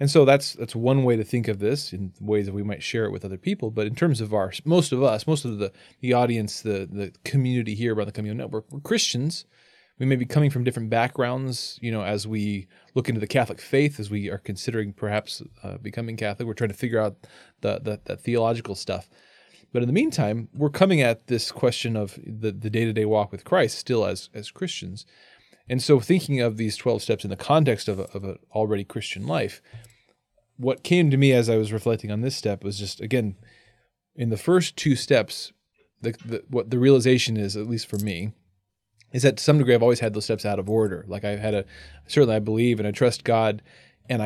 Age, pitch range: 20-39, 105-135 Hz